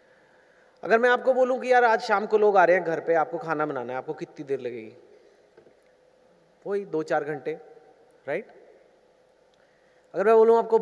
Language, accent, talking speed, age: Hindi, native, 175 wpm, 30-49